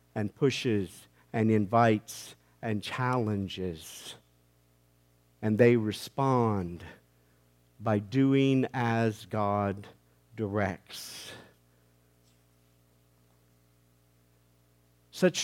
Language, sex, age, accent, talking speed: English, male, 50-69, American, 60 wpm